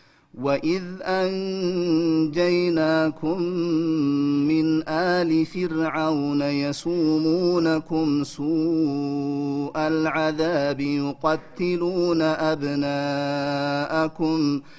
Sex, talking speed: male, 40 wpm